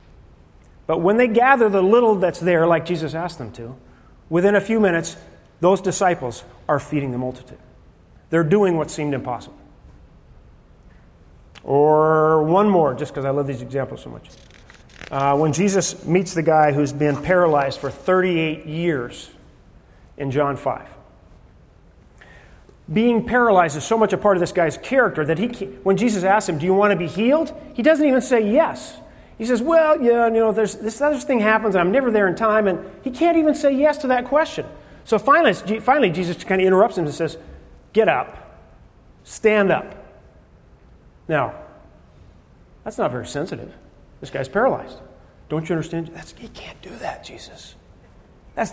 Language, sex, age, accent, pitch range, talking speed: English, male, 40-59, American, 150-220 Hz, 170 wpm